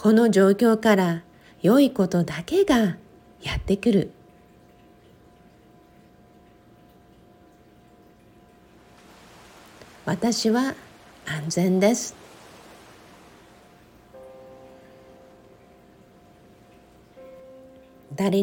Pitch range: 160-225 Hz